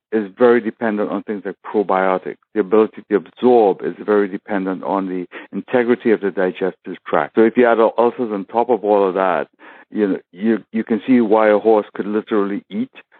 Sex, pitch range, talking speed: male, 105-120 Hz, 200 wpm